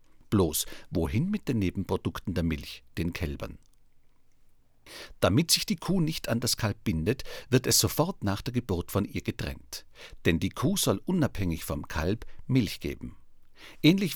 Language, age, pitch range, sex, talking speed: German, 50-69, 90-120 Hz, male, 155 wpm